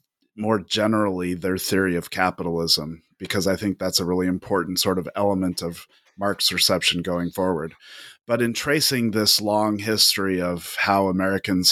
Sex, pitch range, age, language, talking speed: male, 90-105 Hz, 30-49, English, 155 wpm